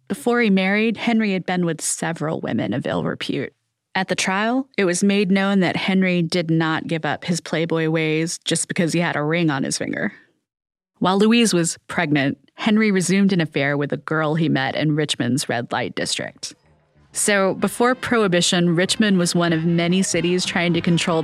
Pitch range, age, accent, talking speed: 160-205 Hz, 30-49, American, 190 wpm